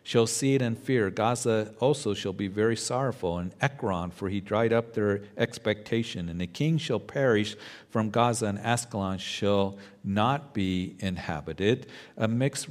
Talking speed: 160 wpm